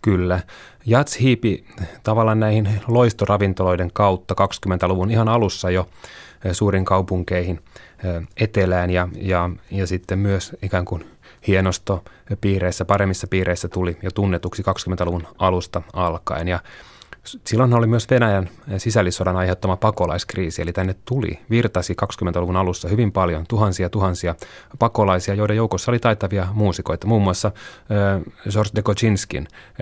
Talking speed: 120 wpm